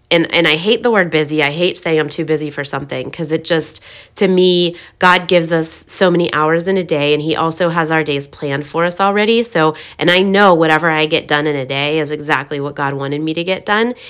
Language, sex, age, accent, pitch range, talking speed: English, female, 20-39, American, 145-170 Hz, 250 wpm